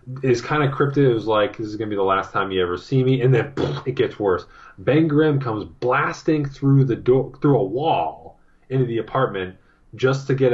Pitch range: 90-130 Hz